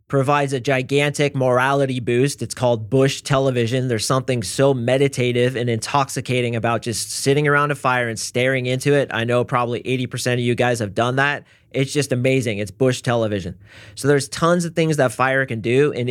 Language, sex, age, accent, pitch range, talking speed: English, male, 30-49, American, 120-140 Hz, 190 wpm